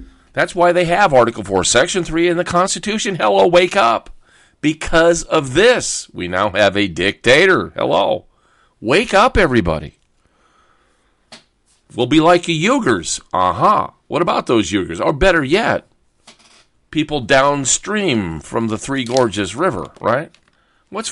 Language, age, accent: English, 50-69, American